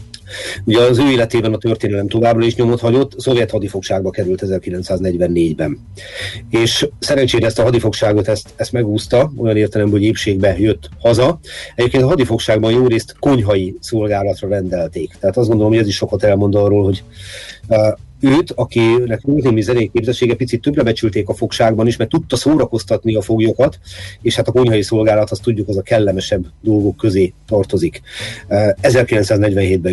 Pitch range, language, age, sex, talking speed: 100-115 Hz, Hungarian, 30-49, male, 155 wpm